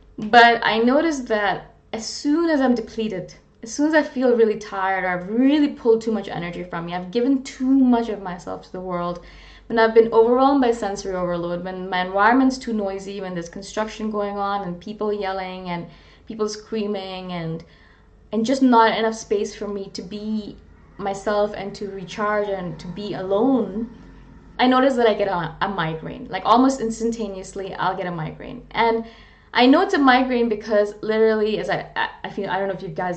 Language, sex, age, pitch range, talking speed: English, female, 20-39, 185-230 Hz, 195 wpm